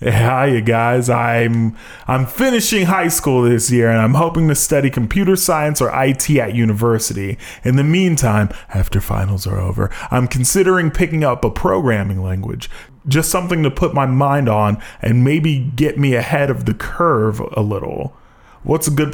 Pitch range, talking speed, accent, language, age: 110-130 Hz, 170 wpm, American, English, 20-39